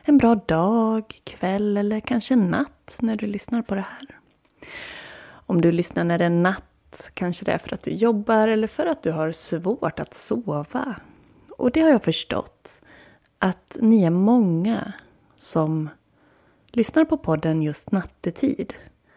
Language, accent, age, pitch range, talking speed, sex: Swedish, native, 30-49, 165-230 Hz, 155 wpm, female